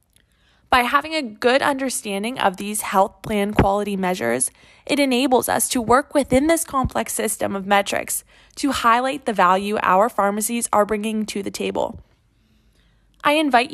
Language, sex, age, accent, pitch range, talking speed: English, female, 20-39, American, 200-275 Hz, 155 wpm